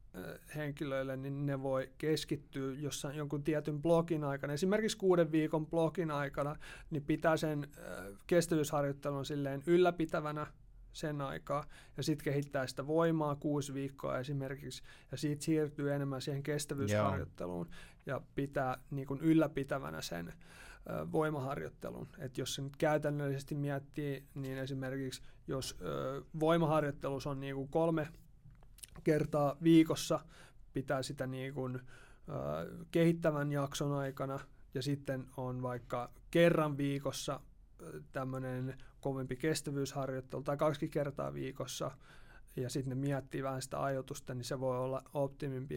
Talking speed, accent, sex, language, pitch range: 120 wpm, native, male, Finnish, 130-150 Hz